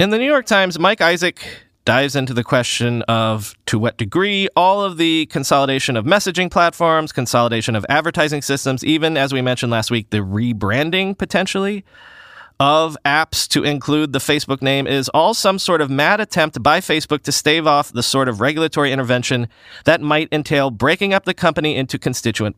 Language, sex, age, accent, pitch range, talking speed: English, male, 30-49, American, 120-170 Hz, 180 wpm